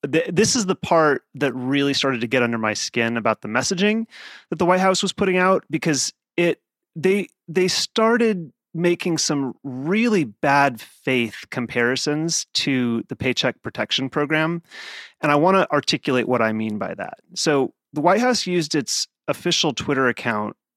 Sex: male